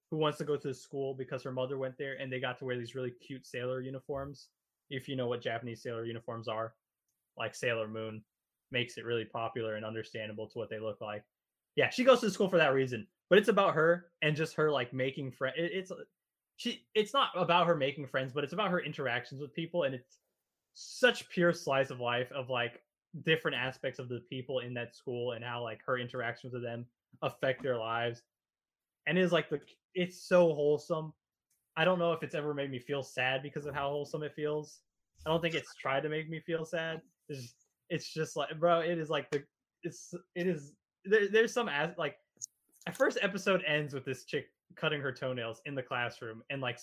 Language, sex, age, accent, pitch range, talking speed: English, male, 20-39, American, 125-165 Hz, 215 wpm